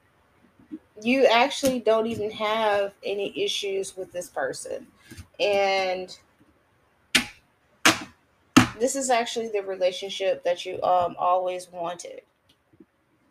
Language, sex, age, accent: English, female, 30-49, American